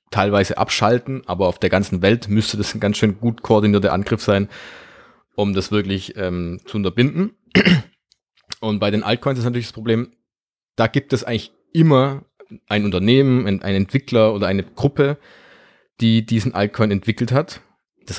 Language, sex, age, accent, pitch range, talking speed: German, male, 30-49, German, 95-115 Hz, 160 wpm